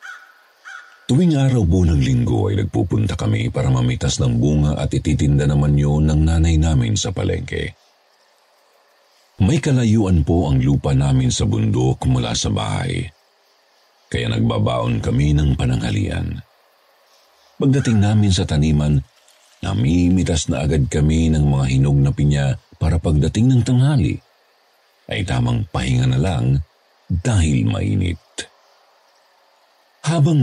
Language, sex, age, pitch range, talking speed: Filipino, male, 50-69, 80-120 Hz, 120 wpm